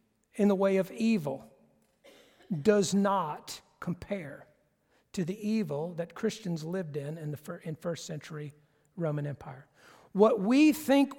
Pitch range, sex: 175-230 Hz, male